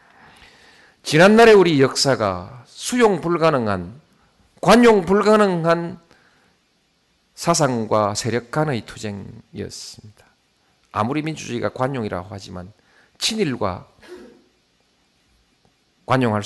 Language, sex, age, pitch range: Korean, male, 40-59, 100-155 Hz